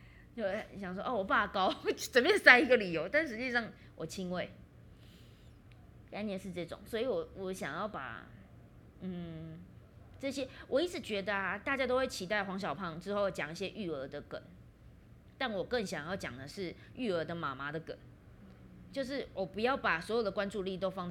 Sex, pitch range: female, 165-210 Hz